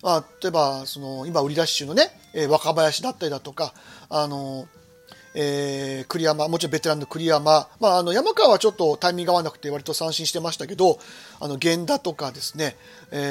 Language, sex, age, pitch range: Japanese, male, 40-59, 150-235 Hz